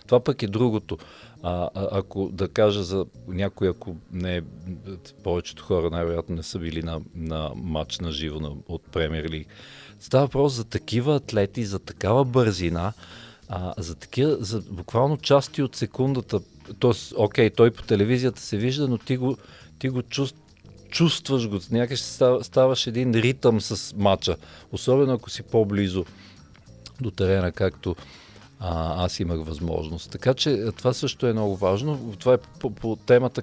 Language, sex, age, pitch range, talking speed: Bulgarian, male, 50-69, 95-125 Hz, 155 wpm